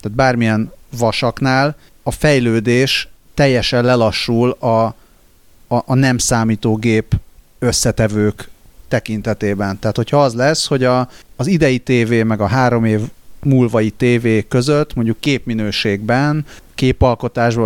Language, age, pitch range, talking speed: Hungarian, 30-49, 105-130 Hz, 110 wpm